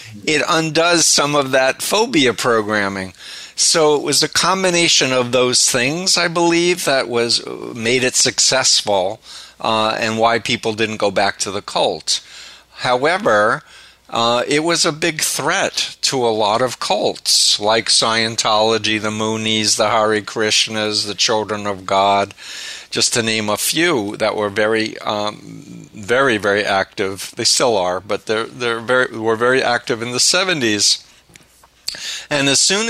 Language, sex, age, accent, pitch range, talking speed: English, male, 50-69, American, 110-140 Hz, 150 wpm